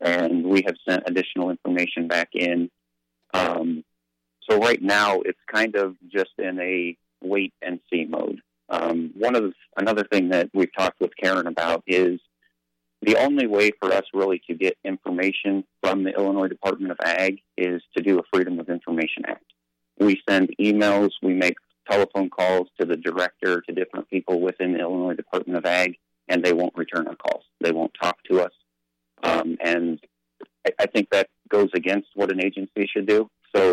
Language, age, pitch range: English, 40-59, 80-95 Hz